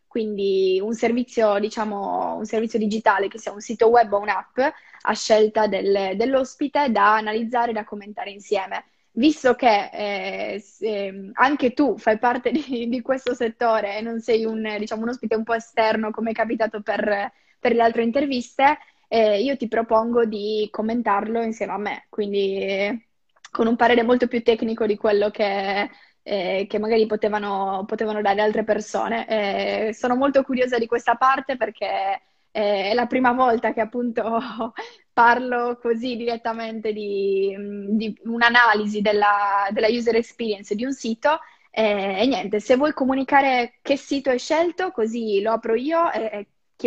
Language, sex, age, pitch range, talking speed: Italian, female, 10-29, 210-240 Hz, 160 wpm